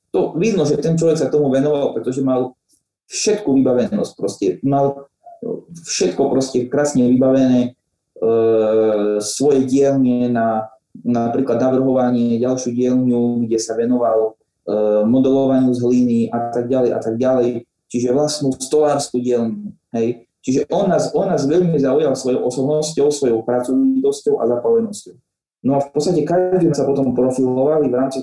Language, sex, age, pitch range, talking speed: Slovak, male, 30-49, 120-140 Hz, 130 wpm